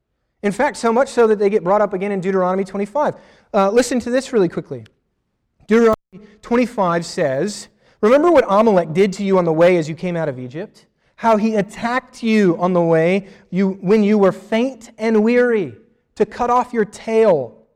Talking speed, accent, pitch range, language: 190 wpm, American, 120-195 Hz, English